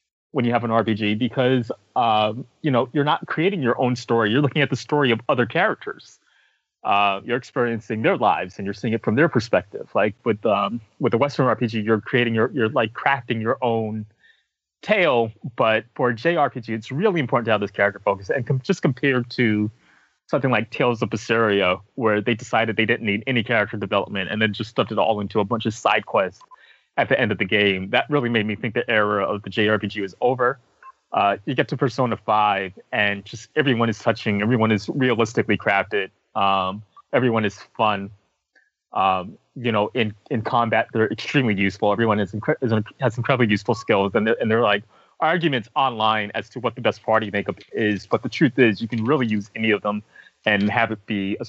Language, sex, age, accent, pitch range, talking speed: English, male, 20-39, American, 105-125 Hz, 205 wpm